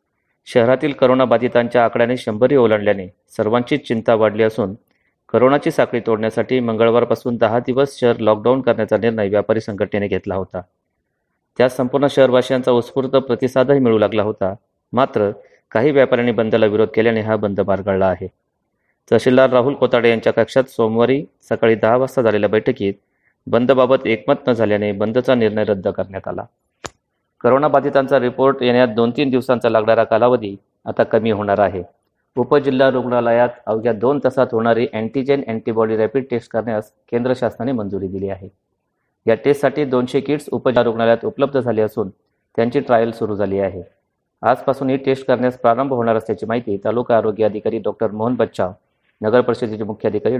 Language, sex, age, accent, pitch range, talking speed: Marathi, male, 30-49, native, 110-130 Hz, 130 wpm